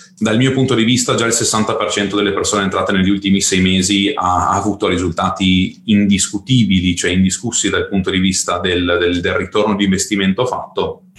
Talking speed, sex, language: 170 wpm, male, Italian